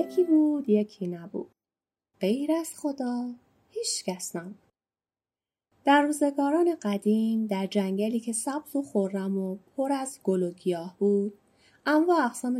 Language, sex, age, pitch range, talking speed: Persian, female, 30-49, 195-280 Hz, 130 wpm